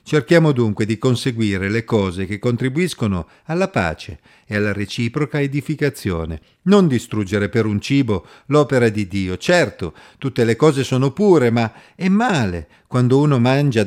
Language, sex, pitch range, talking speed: Italian, male, 105-150 Hz, 145 wpm